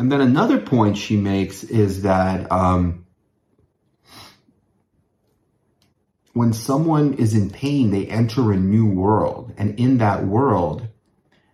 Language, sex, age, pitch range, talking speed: English, male, 30-49, 100-120 Hz, 120 wpm